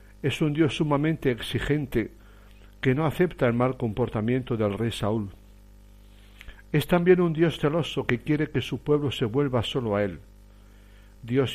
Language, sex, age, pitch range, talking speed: Spanish, male, 60-79, 100-140 Hz, 155 wpm